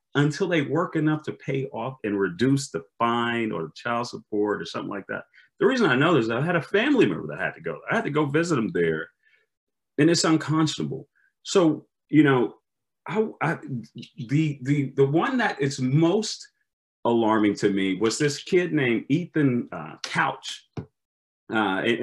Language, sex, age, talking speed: English, male, 40-59, 185 wpm